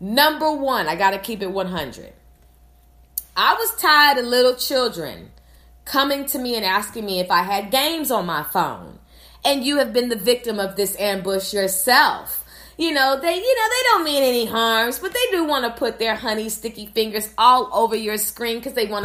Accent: American